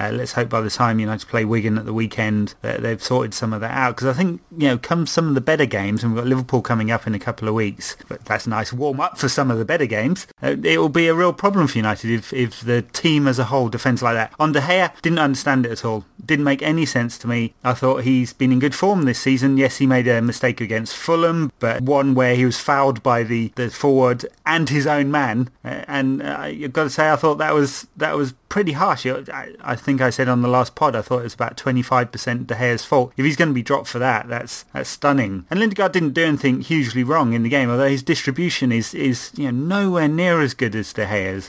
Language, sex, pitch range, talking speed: English, male, 115-140 Hz, 270 wpm